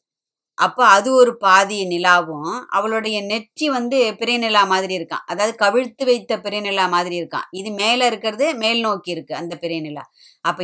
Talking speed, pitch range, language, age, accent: 145 wpm, 185-230 Hz, Tamil, 20-39, native